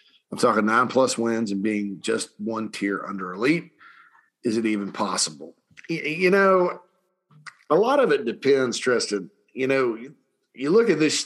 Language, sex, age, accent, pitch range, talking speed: English, male, 40-59, American, 115-155 Hz, 160 wpm